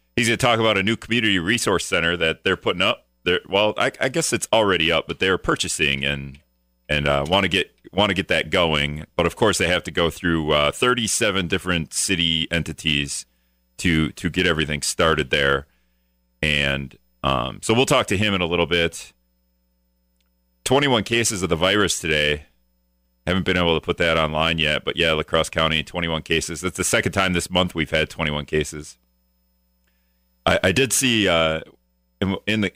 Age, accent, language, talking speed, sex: 30-49, American, English, 190 wpm, male